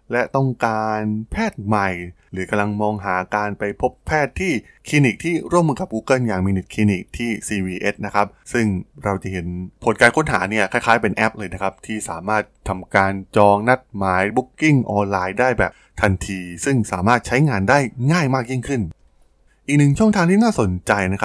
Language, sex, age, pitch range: Thai, male, 20-39, 95-120 Hz